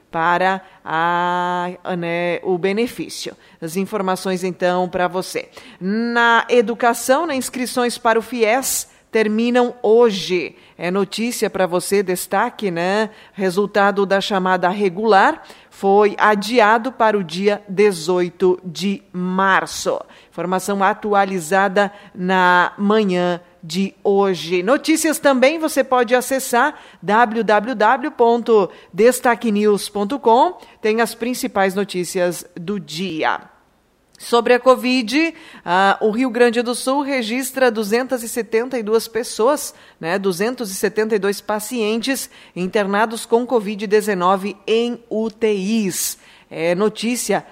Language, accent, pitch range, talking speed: Portuguese, Brazilian, 190-240 Hz, 95 wpm